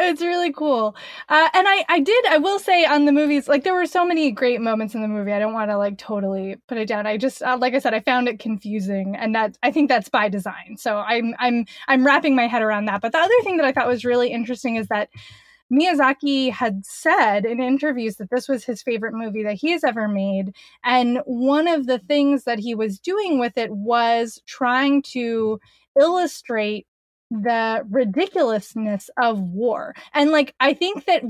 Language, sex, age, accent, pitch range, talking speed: English, female, 20-39, American, 220-295 Hz, 215 wpm